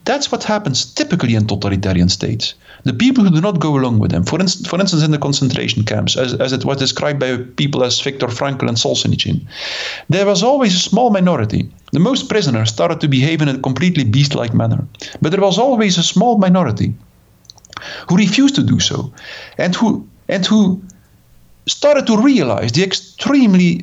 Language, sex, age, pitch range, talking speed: English, male, 50-69, 130-195 Hz, 185 wpm